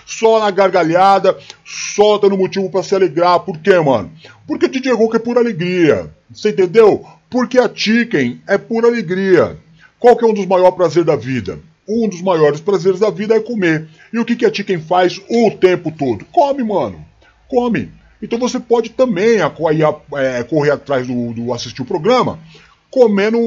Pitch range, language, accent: 180-225 Hz, Portuguese, Brazilian